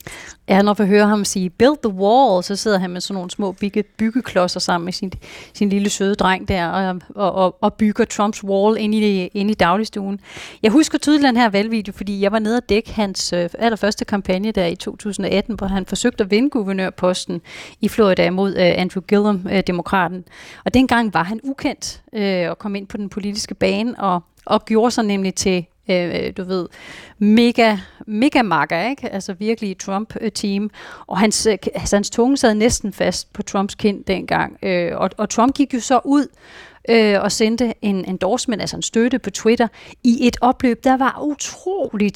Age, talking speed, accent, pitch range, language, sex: 30-49, 185 wpm, native, 190-230 Hz, Danish, female